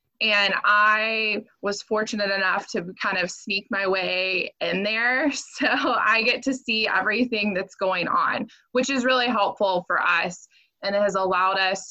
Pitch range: 190-230 Hz